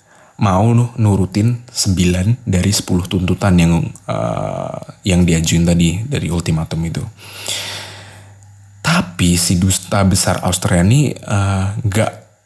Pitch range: 90-105 Hz